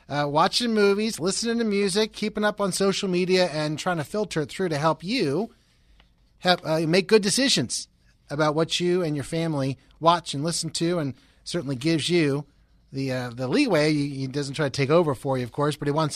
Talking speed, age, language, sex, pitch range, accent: 210 wpm, 30-49, English, male, 145-195 Hz, American